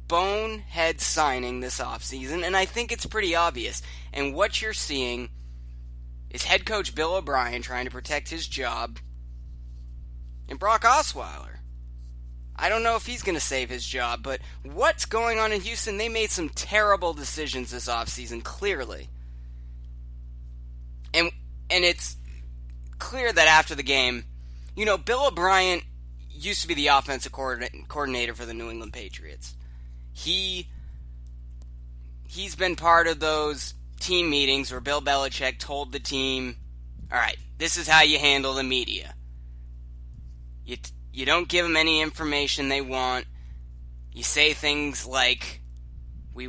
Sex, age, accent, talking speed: male, 20-39, American, 140 wpm